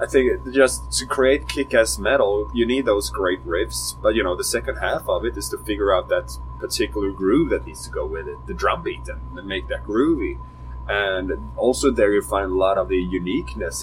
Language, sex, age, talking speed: English, male, 30-49, 215 wpm